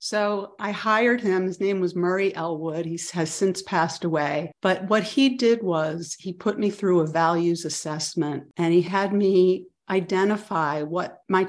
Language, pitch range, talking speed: English, 165-205 Hz, 170 wpm